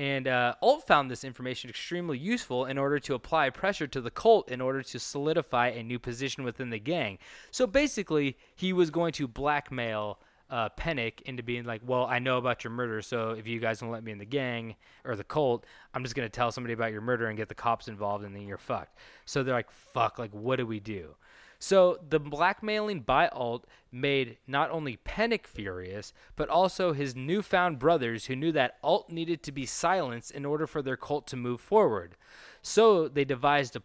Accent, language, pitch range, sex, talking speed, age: American, English, 115-160 Hz, male, 210 wpm, 20-39